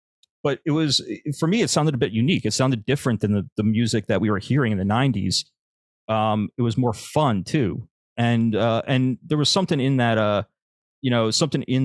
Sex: male